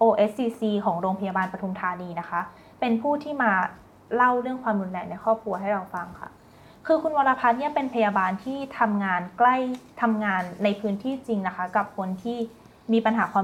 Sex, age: female, 20-39